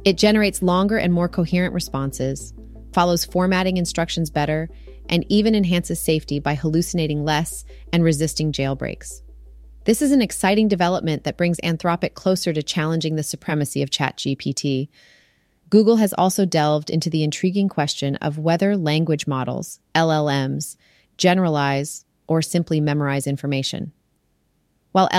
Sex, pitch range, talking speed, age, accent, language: female, 145-180 Hz, 130 wpm, 30-49, American, English